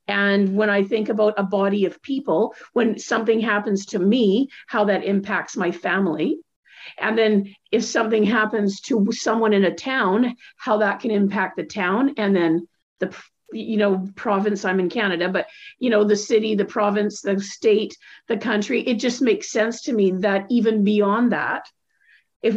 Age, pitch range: 50-69, 205-245 Hz